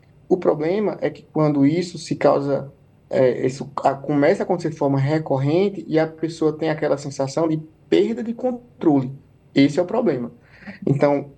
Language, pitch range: Portuguese, 140-180 Hz